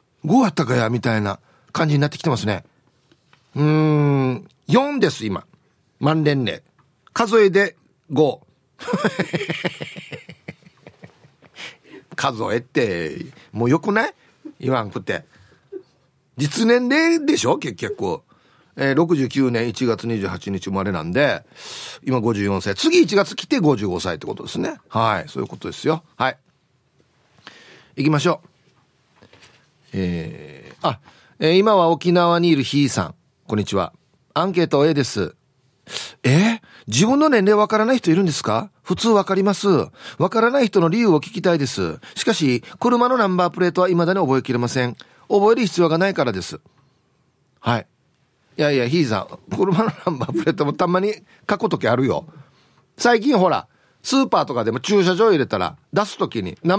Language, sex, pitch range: Japanese, male, 130-200 Hz